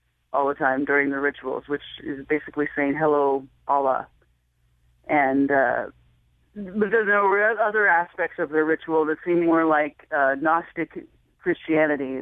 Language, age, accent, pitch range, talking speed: English, 30-49, American, 140-175 Hz, 140 wpm